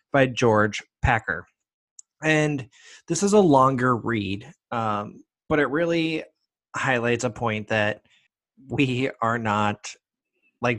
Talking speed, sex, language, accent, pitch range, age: 115 wpm, male, English, American, 110-130 Hz, 30-49